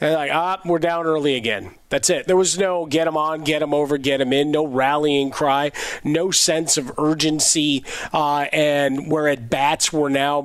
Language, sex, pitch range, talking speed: English, male, 140-175 Hz, 205 wpm